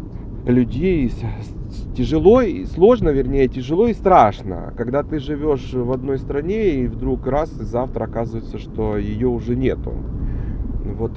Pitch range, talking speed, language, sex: 115-150 Hz, 135 wpm, Ukrainian, male